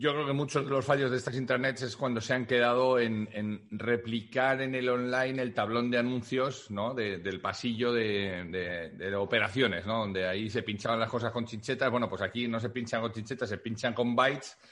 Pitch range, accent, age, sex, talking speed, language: 110-135 Hz, Spanish, 40-59, male, 220 wpm, Spanish